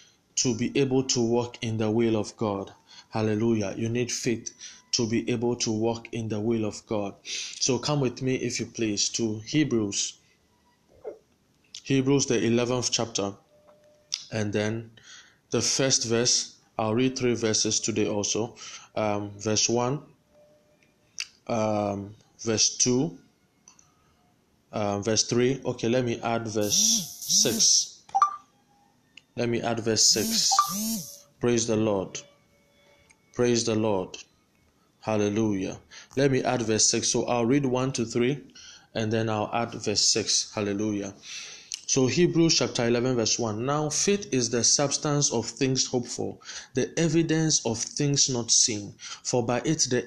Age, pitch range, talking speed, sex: 20-39, 115-135 Hz, 140 wpm, male